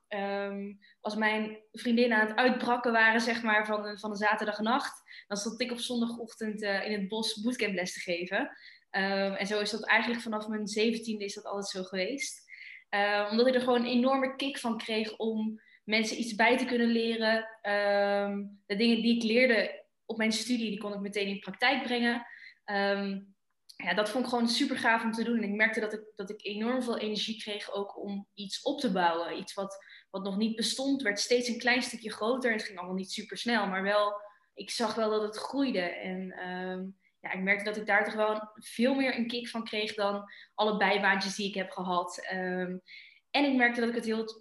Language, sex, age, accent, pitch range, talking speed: Dutch, female, 20-39, Dutch, 200-235 Hz, 215 wpm